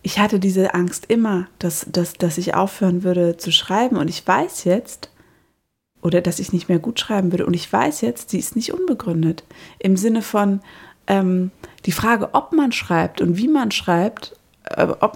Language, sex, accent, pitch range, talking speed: German, female, German, 175-215 Hz, 185 wpm